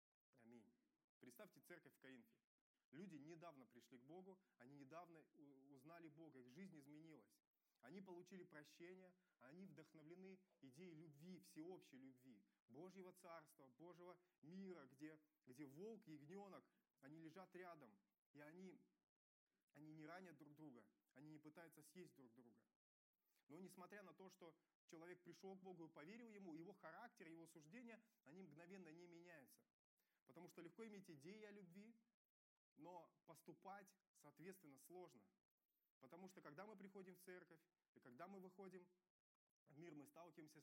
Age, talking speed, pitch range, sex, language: 20-39, 140 wpm, 155-190 Hz, male, Russian